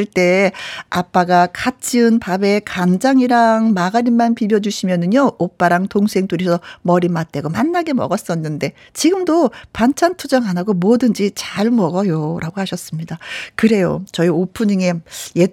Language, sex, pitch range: Korean, female, 180-260 Hz